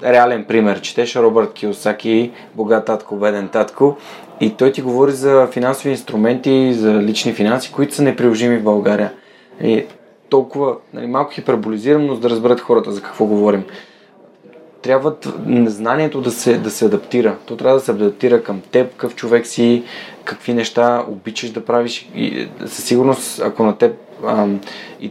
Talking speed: 160 wpm